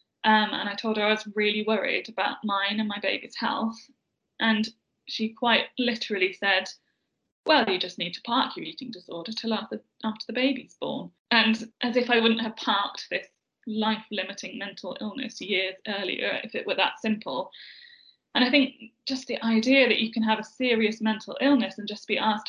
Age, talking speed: 10-29, 190 wpm